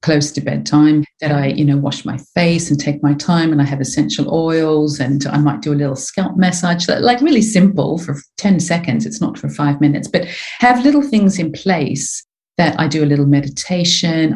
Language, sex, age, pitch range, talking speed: English, female, 40-59, 150-190 Hz, 210 wpm